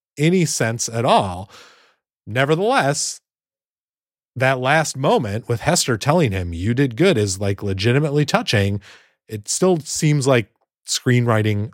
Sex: male